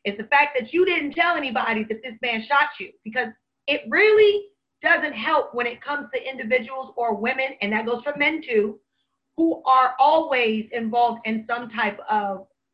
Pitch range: 225-300 Hz